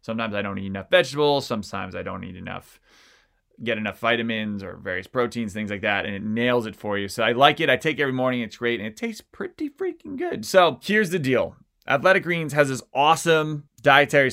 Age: 20-39